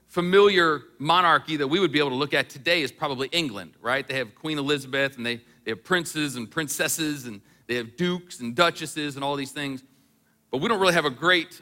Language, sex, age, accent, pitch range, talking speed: English, male, 40-59, American, 125-170 Hz, 220 wpm